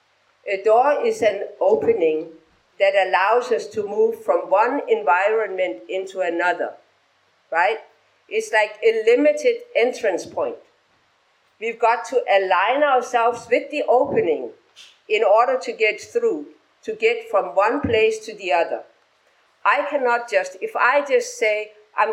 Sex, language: female, English